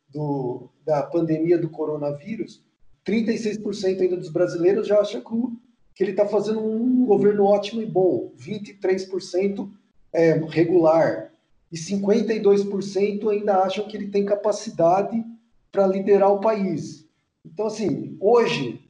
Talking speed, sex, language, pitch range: 125 wpm, male, Portuguese, 170-210 Hz